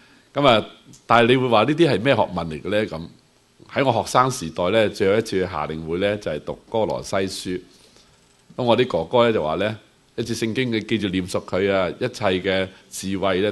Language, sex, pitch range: Chinese, male, 85-115 Hz